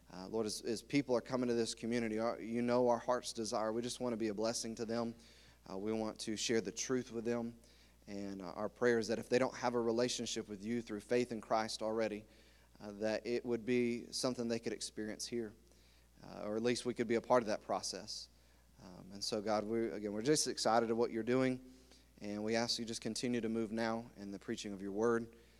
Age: 30-49